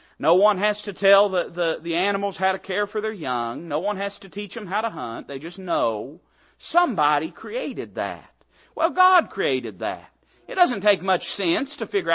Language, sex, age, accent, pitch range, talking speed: English, male, 40-59, American, 185-260 Hz, 200 wpm